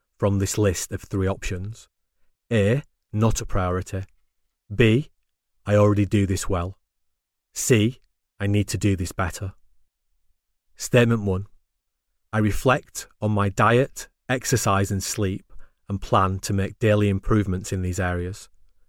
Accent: British